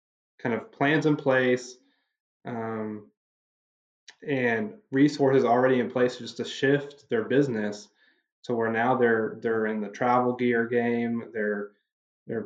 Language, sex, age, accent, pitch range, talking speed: English, male, 20-39, American, 110-125 Hz, 135 wpm